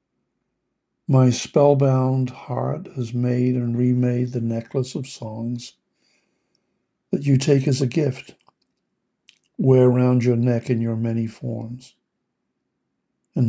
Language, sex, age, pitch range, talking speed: English, male, 60-79, 120-135 Hz, 115 wpm